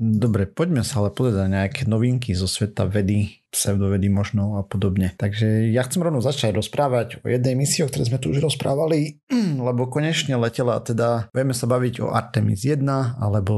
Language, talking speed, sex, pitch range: Slovak, 180 wpm, male, 105-120 Hz